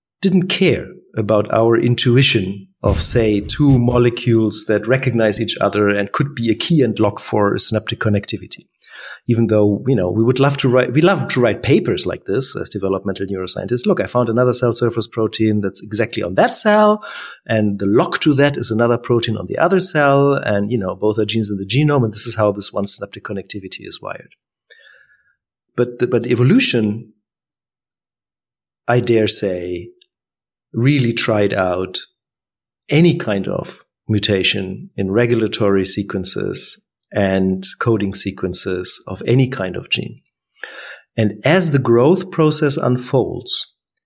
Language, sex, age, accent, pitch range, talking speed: English, male, 30-49, German, 100-130 Hz, 160 wpm